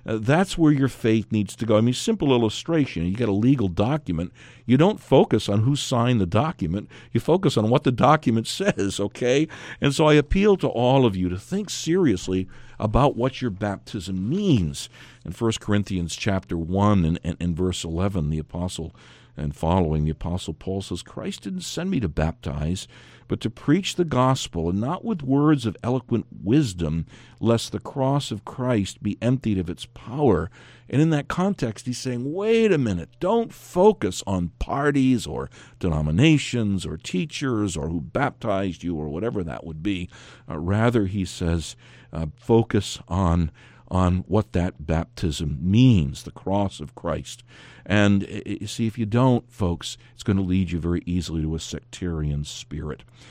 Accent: American